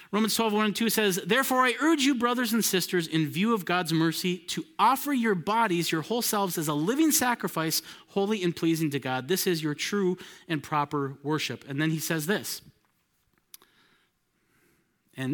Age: 30-49